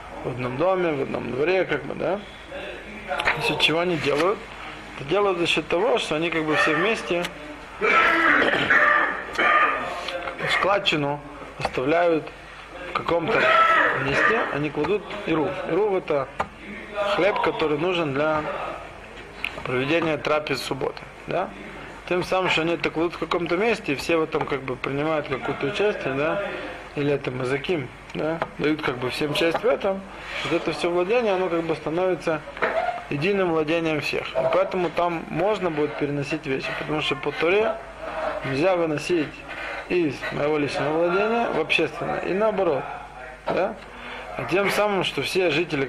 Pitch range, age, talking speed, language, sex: 145-185 Hz, 20-39, 145 wpm, Russian, male